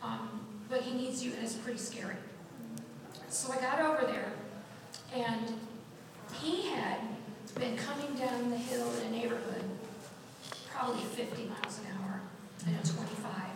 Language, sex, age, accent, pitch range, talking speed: English, female, 40-59, American, 210-250 Hz, 150 wpm